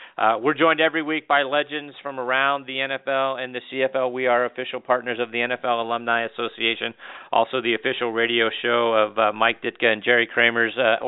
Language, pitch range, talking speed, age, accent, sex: English, 110-125 Hz, 195 wpm, 50-69, American, male